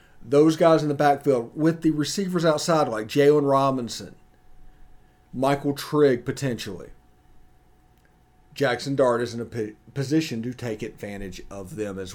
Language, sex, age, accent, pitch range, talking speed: English, male, 40-59, American, 115-145 Hz, 135 wpm